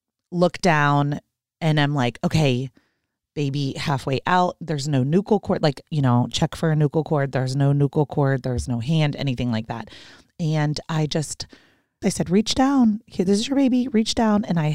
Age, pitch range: 30-49, 140-200 Hz